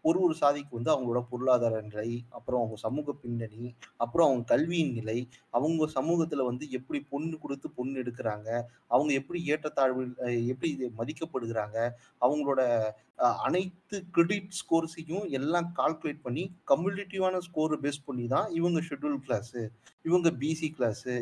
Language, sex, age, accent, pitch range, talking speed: Tamil, male, 30-49, native, 125-165 Hz, 130 wpm